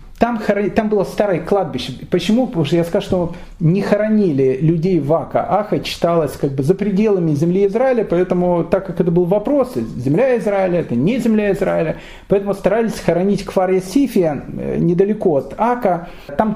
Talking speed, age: 165 wpm, 40-59